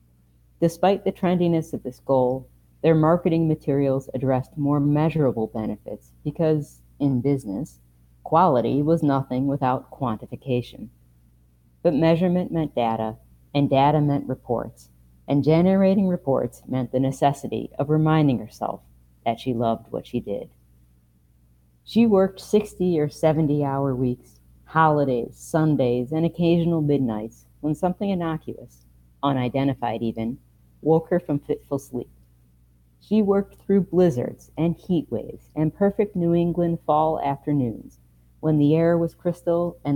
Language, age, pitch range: English, 40-59, 95-160 Hz